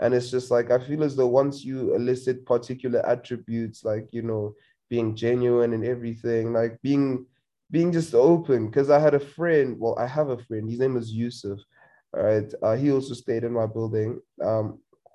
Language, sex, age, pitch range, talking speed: English, male, 20-39, 115-135 Hz, 195 wpm